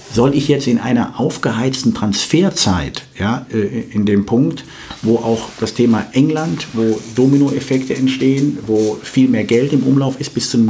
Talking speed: 165 wpm